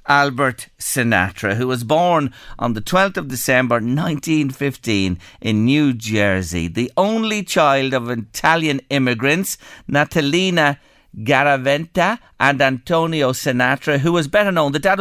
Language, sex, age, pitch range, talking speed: English, male, 50-69, 115-165 Hz, 125 wpm